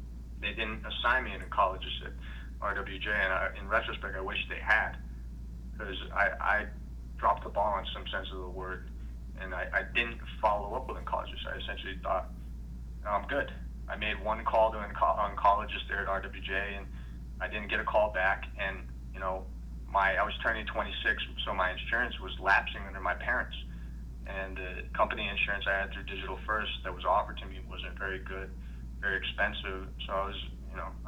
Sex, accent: male, American